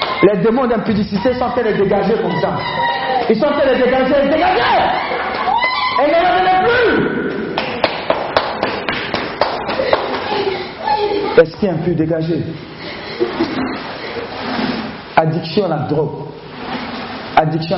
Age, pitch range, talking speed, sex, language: 50-69, 165-250 Hz, 110 wpm, male, French